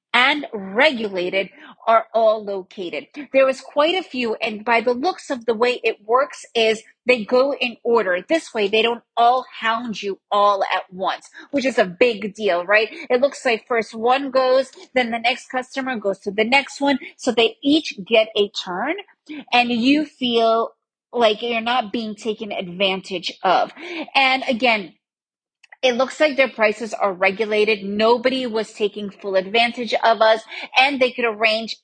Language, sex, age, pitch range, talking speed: English, female, 30-49, 210-260 Hz, 170 wpm